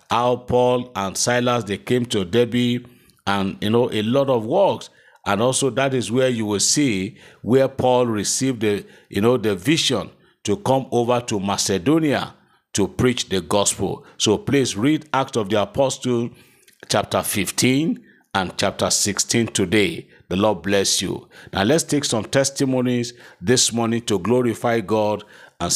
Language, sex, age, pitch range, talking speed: English, male, 50-69, 105-125 Hz, 160 wpm